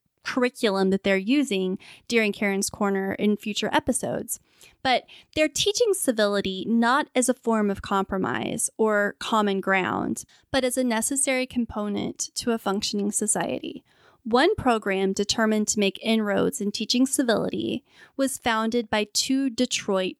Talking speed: 135 wpm